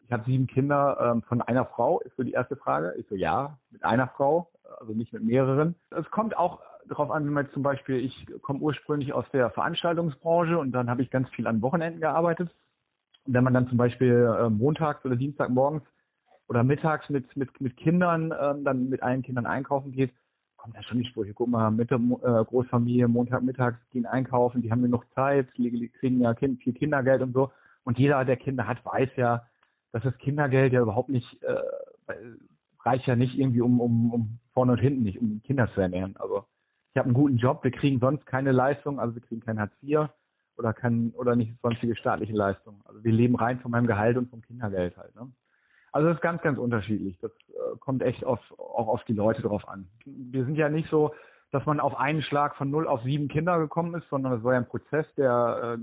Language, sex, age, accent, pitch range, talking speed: German, male, 40-59, German, 120-145 Hz, 215 wpm